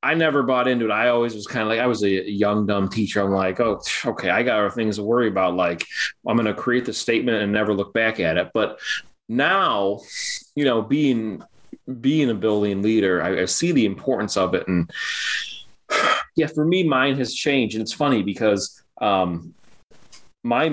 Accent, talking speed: American, 205 wpm